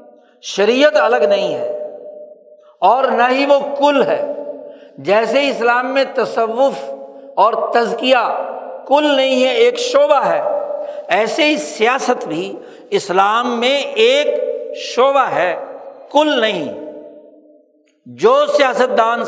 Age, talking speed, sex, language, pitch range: 60-79, 110 wpm, male, Urdu, 190-290 Hz